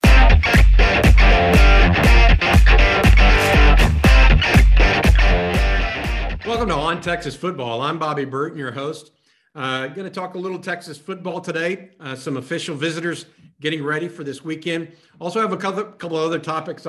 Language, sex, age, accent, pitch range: English, male, 50-69, American, 130-165 Hz